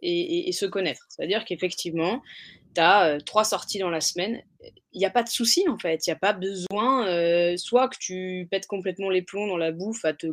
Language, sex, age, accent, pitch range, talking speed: French, female, 20-39, French, 175-230 Hz, 240 wpm